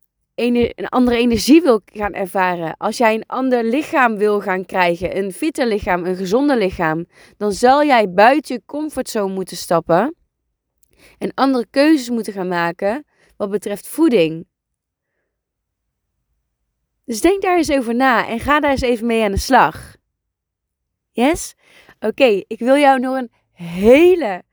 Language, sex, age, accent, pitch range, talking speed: Dutch, female, 20-39, Dutch, 195-265 Hz, 145 wpm